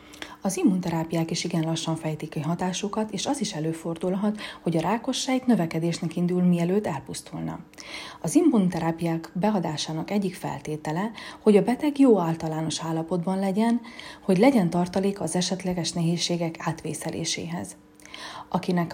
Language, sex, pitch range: Hungarian, female, 165-210 Hz